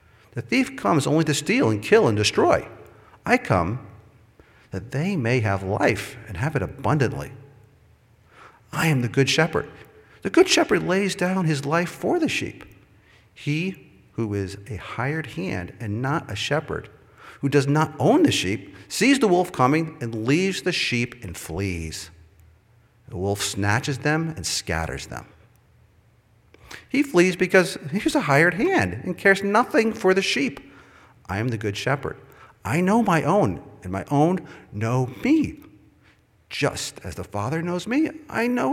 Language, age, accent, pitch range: English, 50-69, American, 105-175 Hz